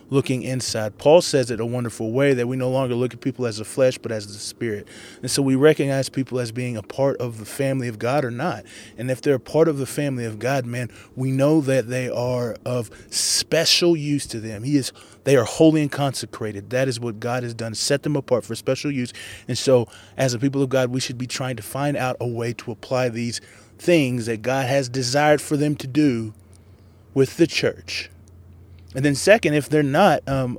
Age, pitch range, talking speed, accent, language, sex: 20-39, 110-140 Hz, 230 wpm, American, English, male